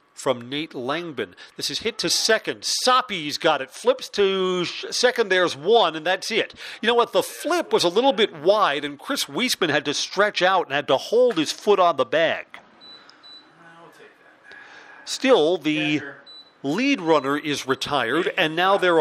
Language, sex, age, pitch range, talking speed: English, male, 40-59, 140-195 Hz, 170 wpm